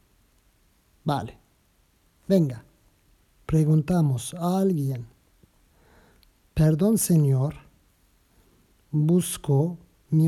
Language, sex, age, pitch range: Turkish, male, 50-69, 105-155 Hz